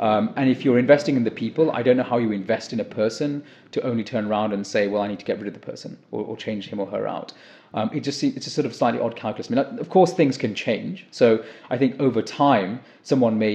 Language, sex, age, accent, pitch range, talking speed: English, male, 30-49, British, 110-135 Hz, 280 wpm